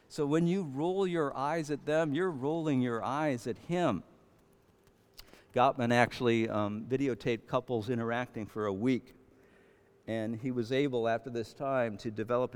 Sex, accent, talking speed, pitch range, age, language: male, American, 155 wpm, 105-135 Hz, 60-79, English